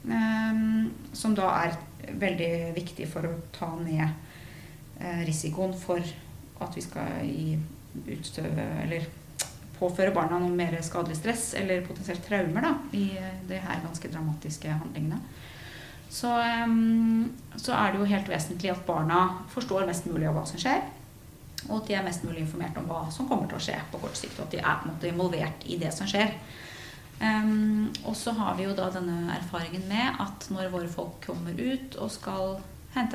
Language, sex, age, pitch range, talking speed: English, female, 30-49, 165-215 Hz, 185 wpm